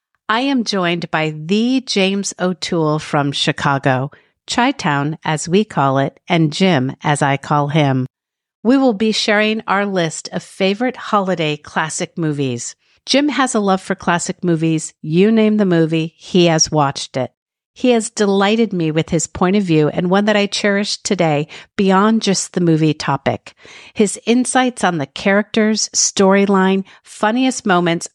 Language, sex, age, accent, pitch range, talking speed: English, female, 50-69, American, 160-215 Hz, 160 wpm